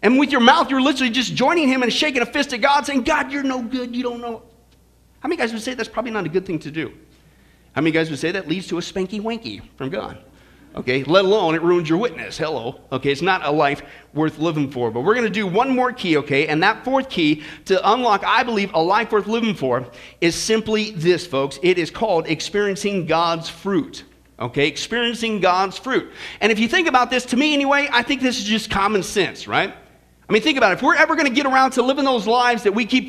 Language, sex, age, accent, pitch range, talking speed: English, male, 40-59, American, 195-270 Hz, 245 wpm